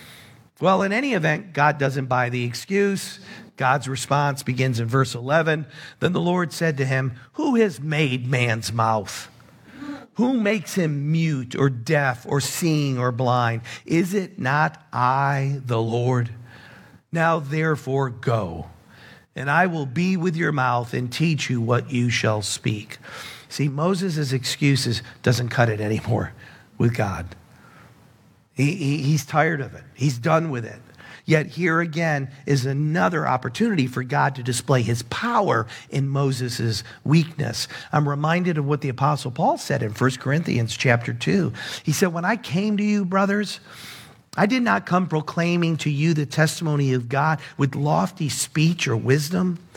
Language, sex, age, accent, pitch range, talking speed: English, male, 50-69, American, 125-165 Hz, 155 wpm